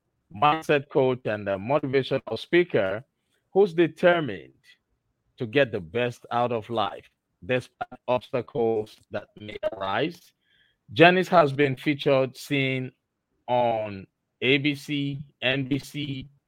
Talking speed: 100 wpm